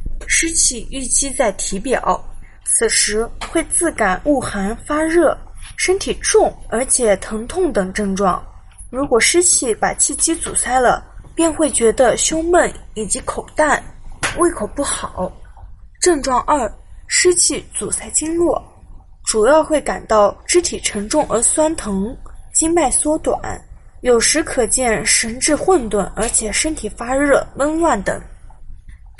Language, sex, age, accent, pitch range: Chinese, female, 20-39, native, 215-315 Hz